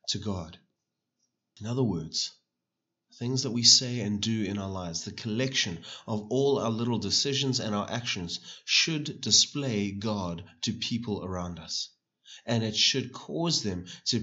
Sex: male